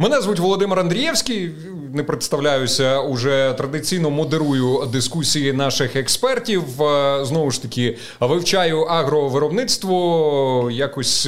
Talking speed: 95 wpm